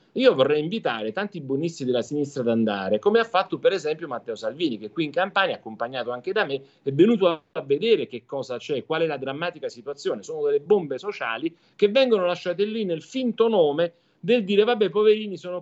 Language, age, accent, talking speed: Italian, 40-59, native, 200 wpm